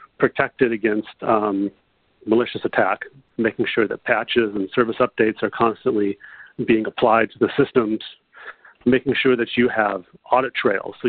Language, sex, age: English, male, 40-59